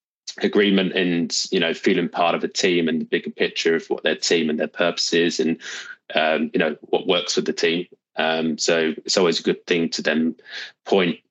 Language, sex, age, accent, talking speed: English, male, 20-39, British, 210 wpm